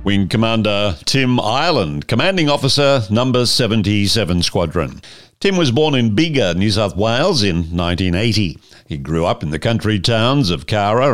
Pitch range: 100-140 Hz